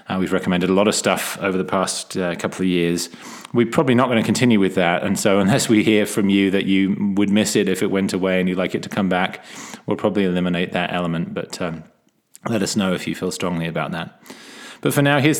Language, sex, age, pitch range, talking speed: English, male, 20-39, 90-105 Hz, 255 wpm